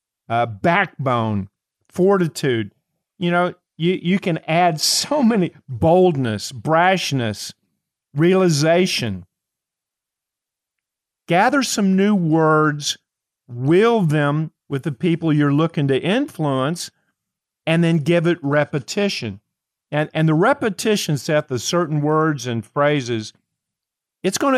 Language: English